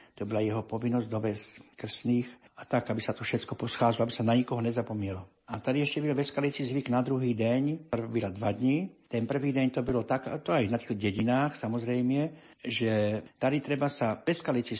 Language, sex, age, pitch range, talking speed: Slovak, male, 60-79, 115-140 Hz, 190 wpm